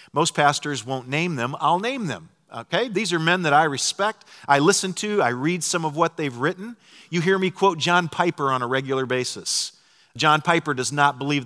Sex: male